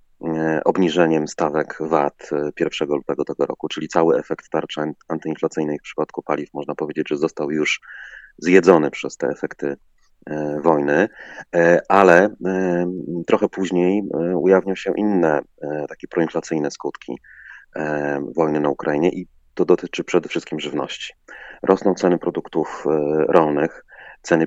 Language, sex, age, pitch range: Polish, male, 30-49, 75-85 Hz